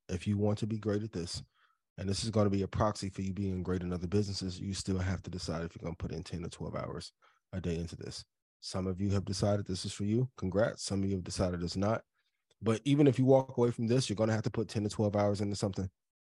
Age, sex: 20-39, male